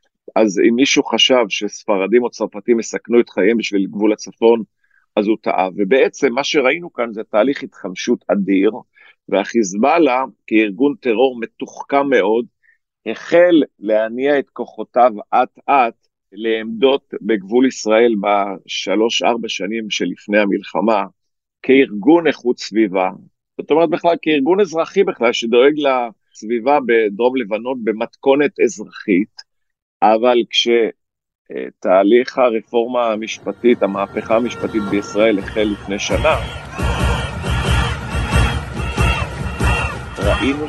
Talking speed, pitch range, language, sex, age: 100 wpm, 110-135 Hz, Hebrew, male, 50-69